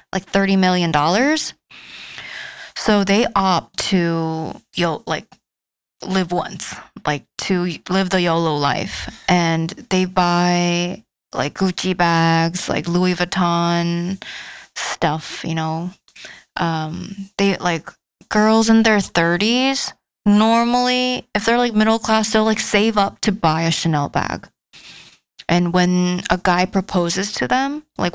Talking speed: 125 wpm